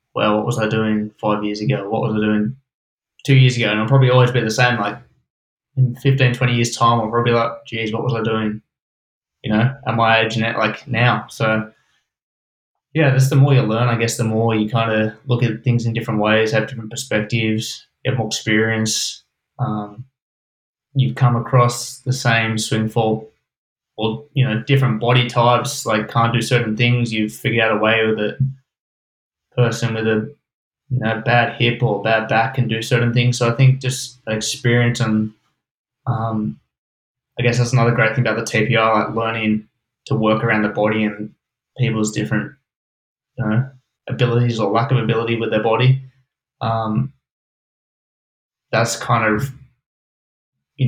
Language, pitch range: English, 110-125 Hz